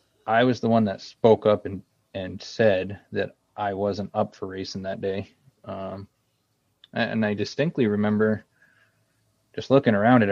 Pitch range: 95-110 Hz